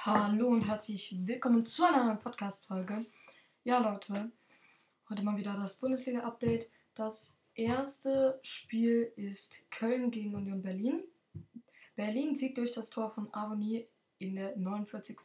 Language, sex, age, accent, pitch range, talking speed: German, female, 10-29, German, 205-240 Hz, 130 wpm